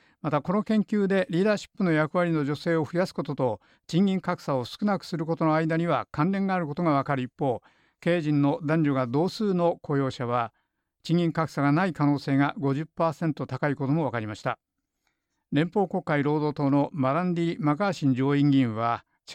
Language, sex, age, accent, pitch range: Japanese, male, 50-69, native, 140-185 Hz